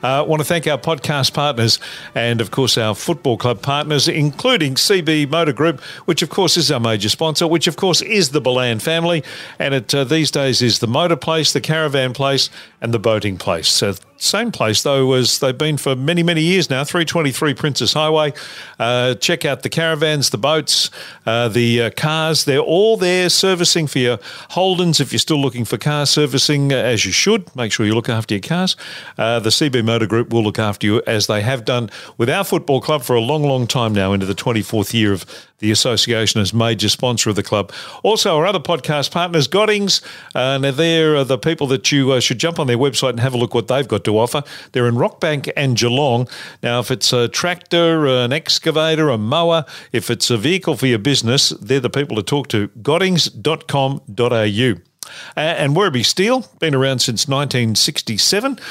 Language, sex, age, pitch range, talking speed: English, male, 50-69, 120-160 Hz, 205 wpm